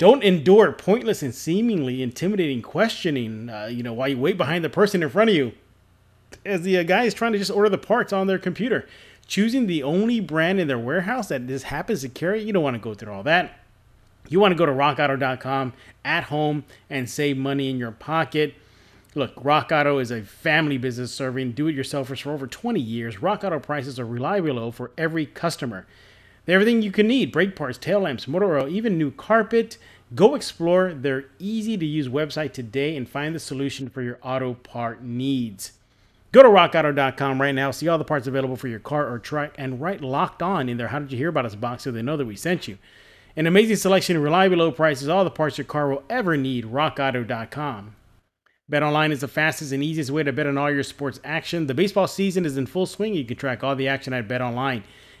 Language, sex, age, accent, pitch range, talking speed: English, male, 30-49, American, 130-180 Hz, 215 wpm